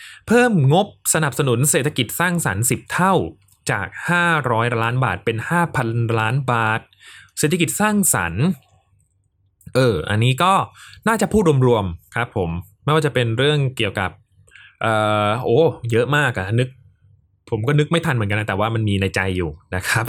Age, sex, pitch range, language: 20-39, male, 105-150 Hz, Thai